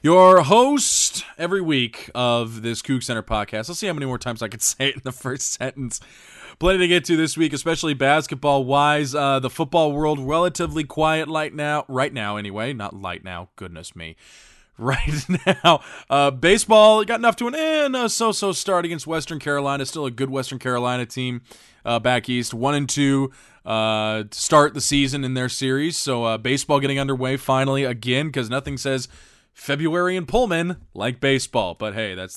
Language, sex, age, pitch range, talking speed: English, male, 20-39, 115-150 Hz, 190 wpm